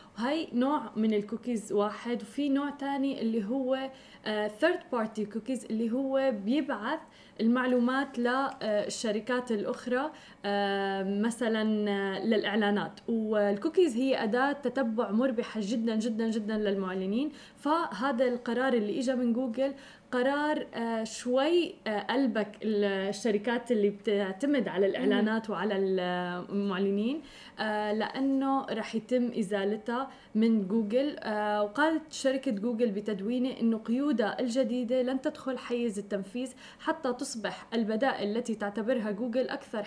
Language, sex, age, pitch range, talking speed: Arabic, female, 20-39, 215-260 Hz, 105 wpm